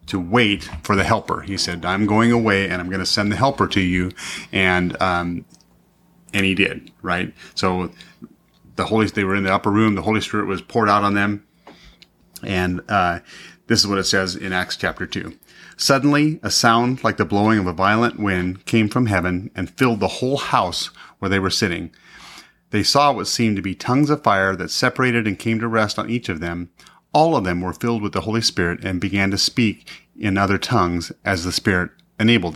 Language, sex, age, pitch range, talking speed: English, male, 30-49, 95-115 Hz, 210 wpm